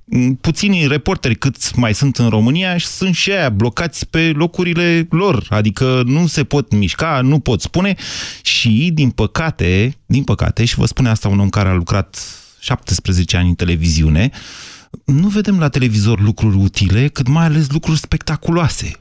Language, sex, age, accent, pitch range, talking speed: Romanian, male, 30-49, native, 100-155 Hz, 165 wpm